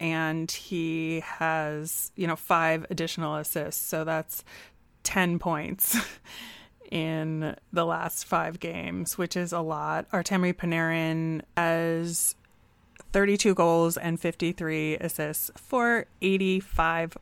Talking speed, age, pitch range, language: 110 wpm, 30-49, 160-185 Hz, English